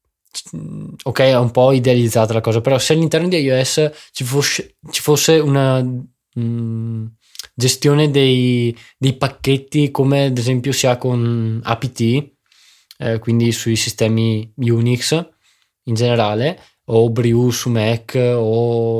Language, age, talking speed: Italian, 20-39, 125 wpm